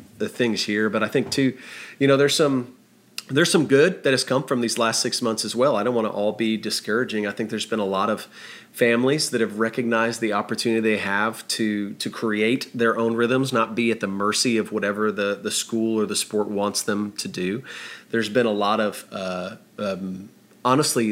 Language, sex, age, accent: English, male, 30-49, American